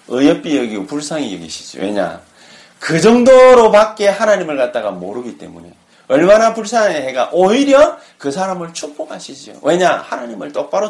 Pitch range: 205-275 Hz